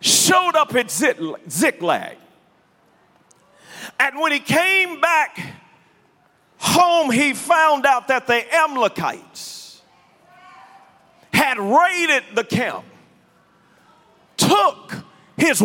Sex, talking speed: male, 85 wpm